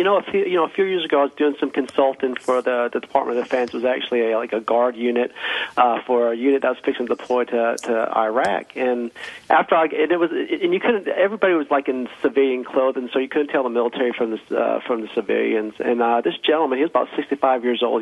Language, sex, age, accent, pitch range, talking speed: English, male, 40-59, American, 120-140 Hz, 260 wpm